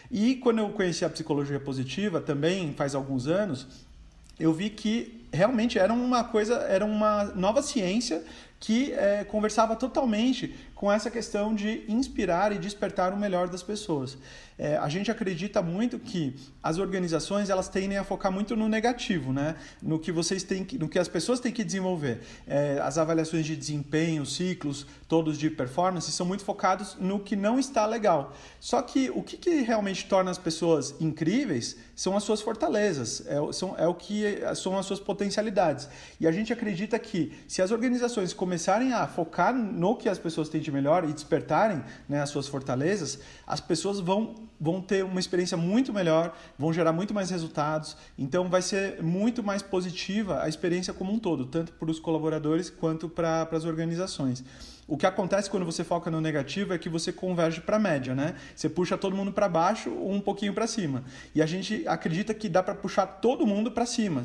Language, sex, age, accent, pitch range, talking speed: Portuguese, male, 40-59, Brazilian, 160-210 Hz, 175 wpm